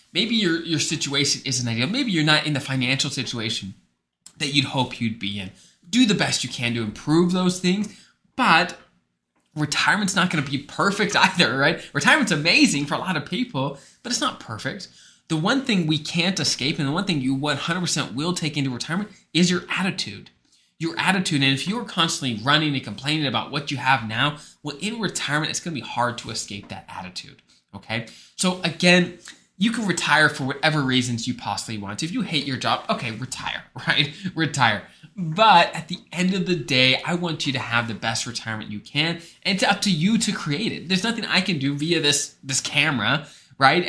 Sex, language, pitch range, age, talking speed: male, English, 130-180 Hz, 20-39, 205 wpm